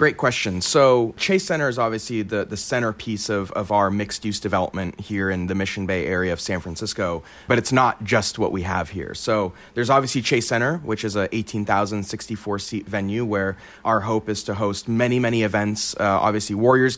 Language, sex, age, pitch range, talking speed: English, male, 30-49, 105-120 Hz, 190 wpm